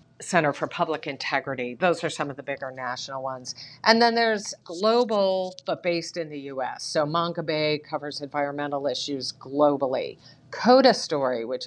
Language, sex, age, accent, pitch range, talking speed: English, female, 50-69, American, 135-175 Hz, 160 wpm